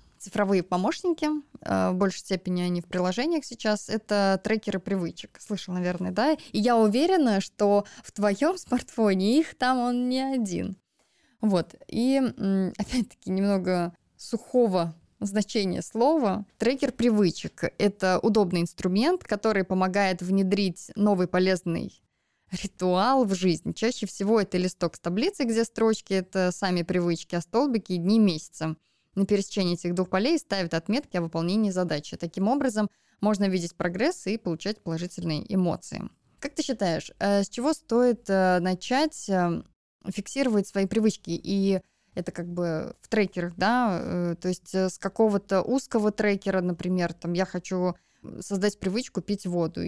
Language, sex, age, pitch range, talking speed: Russian, female, 20-39, 180-225 Hz, 135 wpm